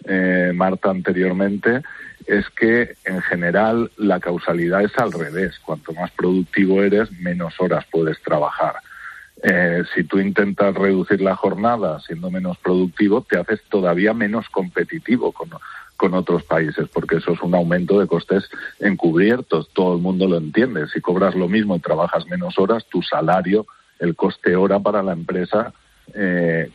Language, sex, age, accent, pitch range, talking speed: Spanish, male, 50-69, Spanish, 90-105 Hz, 155 wpm